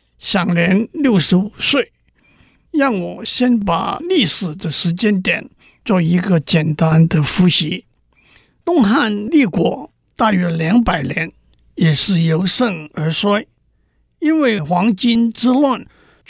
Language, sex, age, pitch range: Chinese, male, 60-79, 170-240 Hz